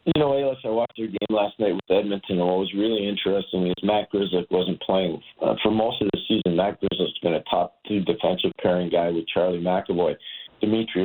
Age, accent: 50-69, American